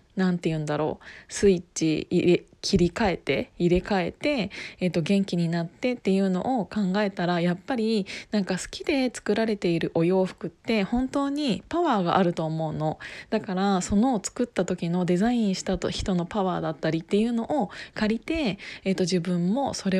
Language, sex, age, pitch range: Japanese, female, 20-39, 180-220 Hz